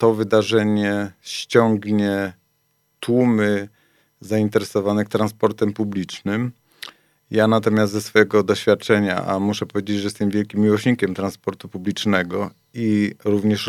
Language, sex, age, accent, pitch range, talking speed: Polish, male, 40-59, native, 105-120 Hz, 100 wpm